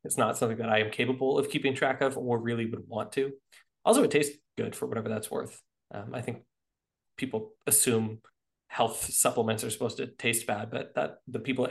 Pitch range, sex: 115-140 Hz, male